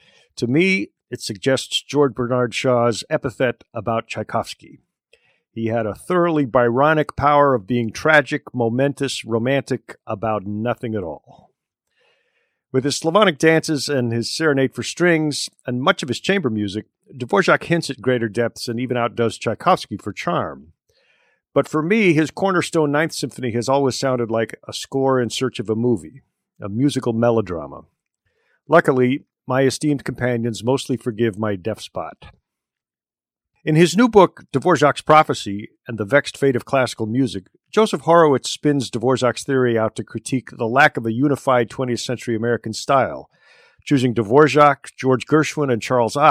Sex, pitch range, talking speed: male, 115-145 Hz, 150 wpm